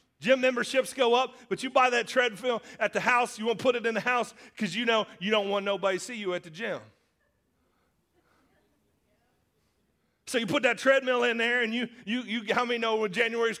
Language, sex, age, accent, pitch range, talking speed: English, male, 30-49, American, 200-255 Hz, 215 wpm